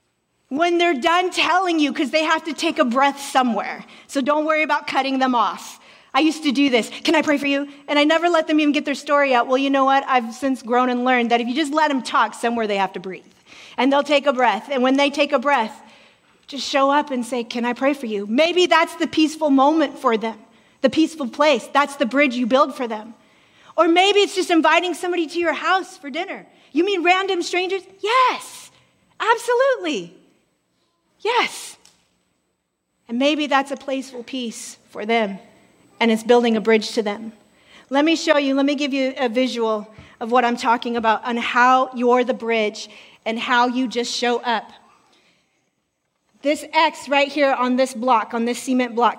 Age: 40-59